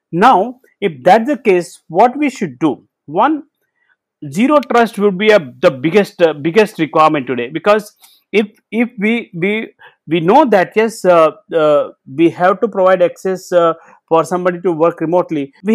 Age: 50-69